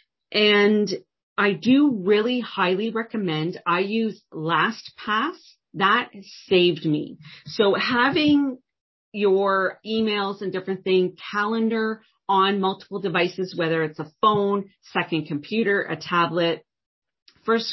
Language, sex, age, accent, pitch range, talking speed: English, female, 40-59, American, 155-200 Hz, 110 wpm